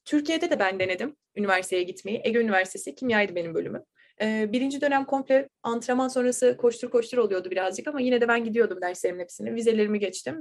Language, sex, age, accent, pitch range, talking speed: Turkish, female, 20-39, native, 210-265 Hz, 175 wpm